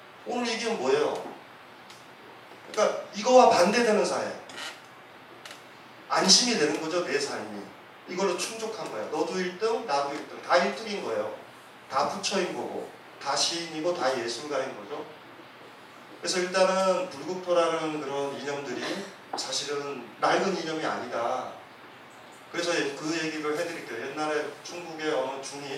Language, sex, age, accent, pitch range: Korean, male, 30-49, native, 145-205 Hz